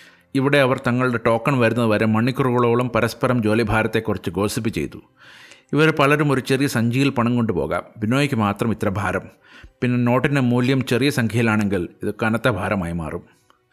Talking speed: 140 wpm